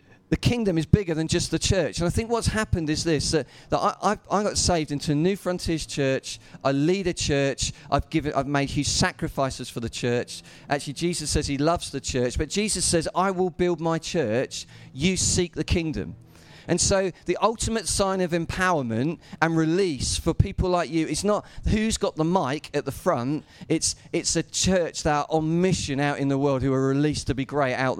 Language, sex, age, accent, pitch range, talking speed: English, male, 40-59, British, 130-175 Hz, 210 wpm